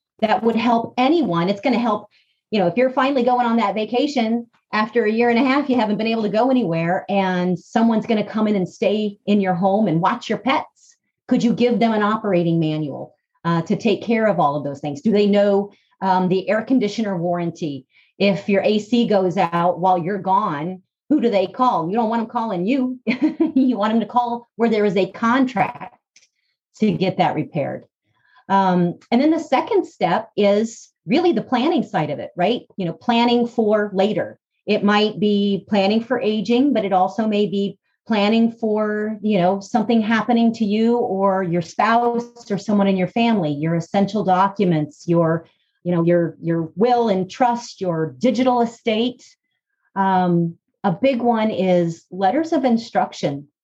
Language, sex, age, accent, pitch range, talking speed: English, female, 30-49, American, 185-240 Hz, 190 wpm